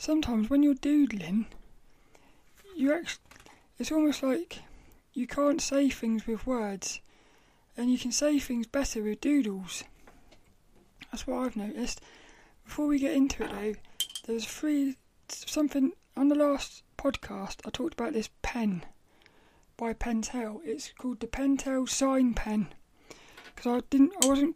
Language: English